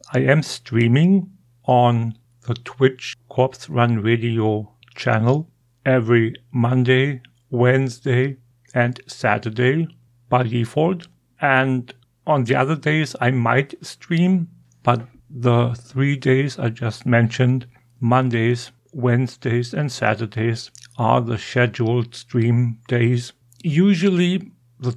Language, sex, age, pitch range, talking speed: English, male, 50-69, 120-135 Hz, 105 wpm